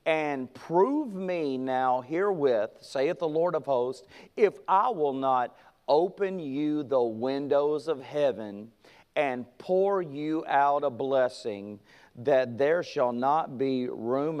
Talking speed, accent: 135 wpm, American